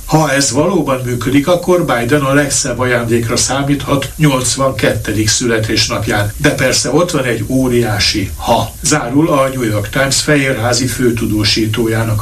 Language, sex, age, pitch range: Hungarian, male, 60-79, 115-140 Hz